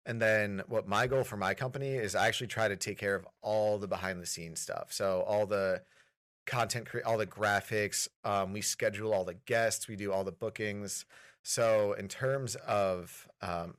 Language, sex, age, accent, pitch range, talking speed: English, male, 30-49, American, 100-115 Hz, 195 wpm